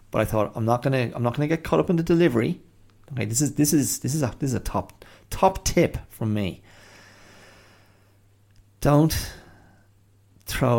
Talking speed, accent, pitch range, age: 195 wpm, Irish, 95-115 Hz, 30-49